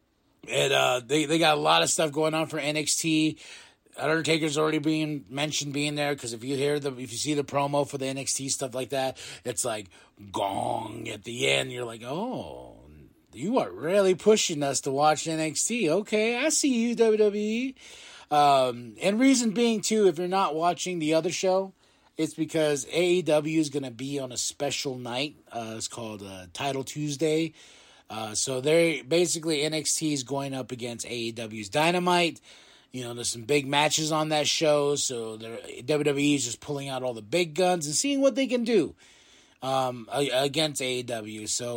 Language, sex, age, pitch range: English, male, 30-49, 130-175 Hz